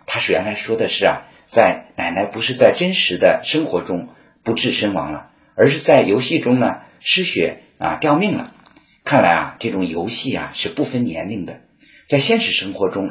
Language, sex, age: Chinese, male, 50-69